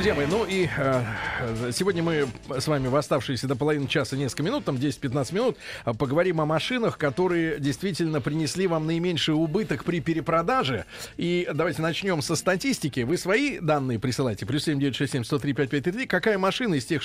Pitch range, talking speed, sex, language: 140-190 Hz, 160 wpm, male, Russian